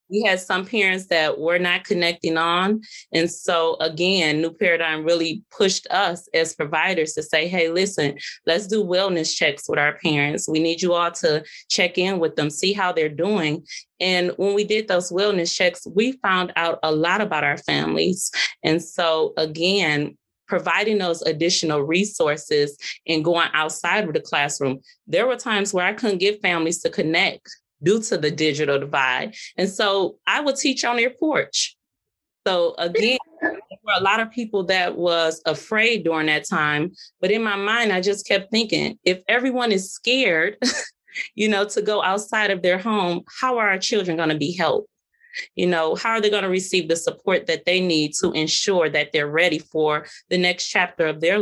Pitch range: 165-210 Hz